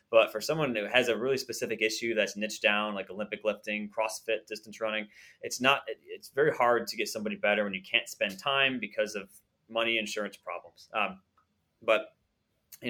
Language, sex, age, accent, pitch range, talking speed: English, male, 20-39, American, 105-125 Hz, 180 wpm